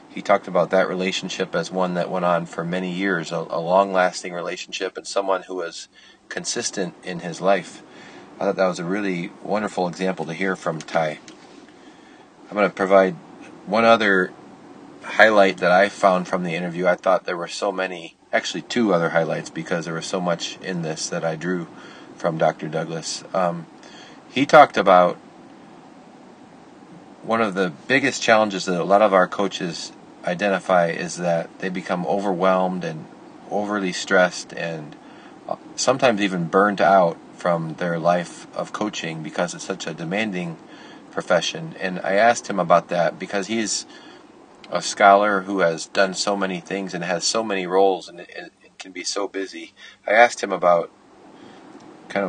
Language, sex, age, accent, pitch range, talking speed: English, male, 30-49, American, 90-100 Hz, 165 wpm